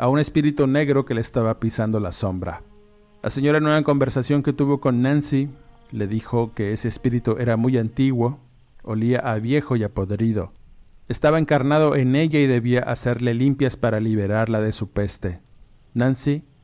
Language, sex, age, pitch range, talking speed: Spanish, male, 50-69, 110-135 Hz, 170 wpm